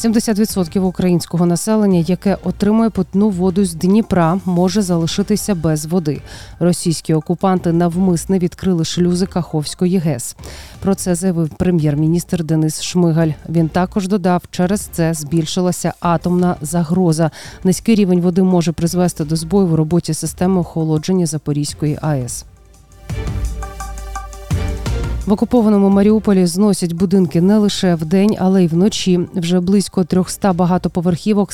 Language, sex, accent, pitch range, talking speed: Ukrainian, female, native, 165-190 Hz, 120 wpm